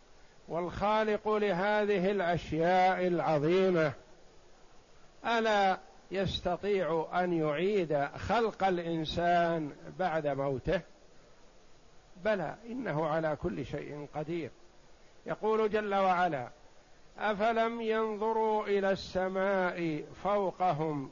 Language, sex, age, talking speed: Arabic, male, 60-79, 75 wpm